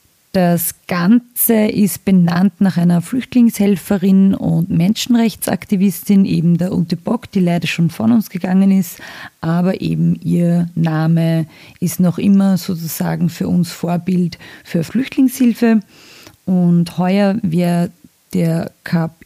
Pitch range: 175-205 Hz